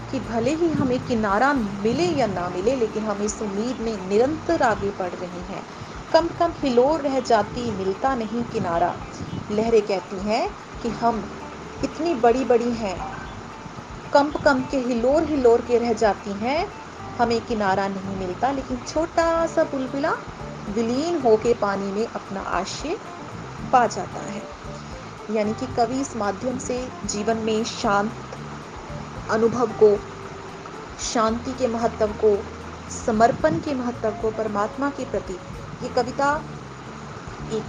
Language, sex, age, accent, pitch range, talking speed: Hindi, female, 30-49, native, 215-275 Hz, 140 wpm